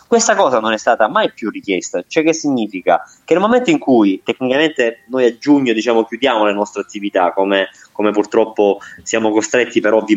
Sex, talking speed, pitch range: male, 190 wpm, 110-160 Hz